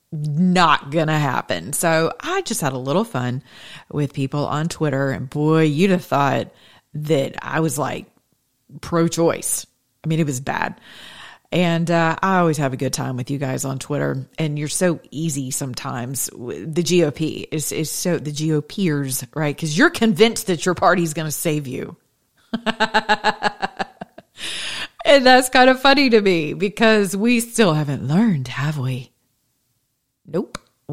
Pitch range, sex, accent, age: 140-190 Hz, female, American, 40-59